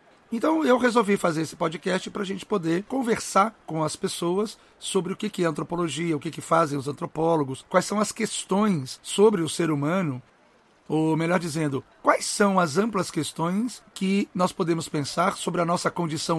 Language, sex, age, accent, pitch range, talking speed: Portuguese, male, 60-79, Brazilian, 130-180 Hz, 175 wpm